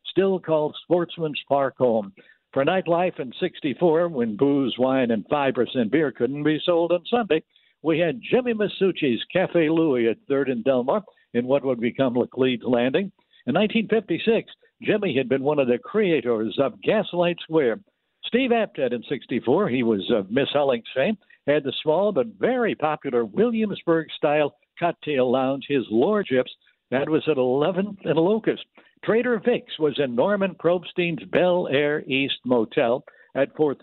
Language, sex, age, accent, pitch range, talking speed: English, male, 60-79, American, 135-195 Hz, 155 wpm